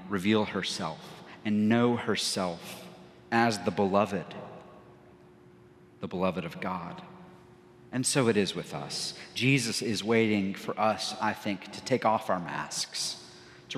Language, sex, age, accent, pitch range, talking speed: English, male, 40-59, American, 100-140 Hz, 135 wpm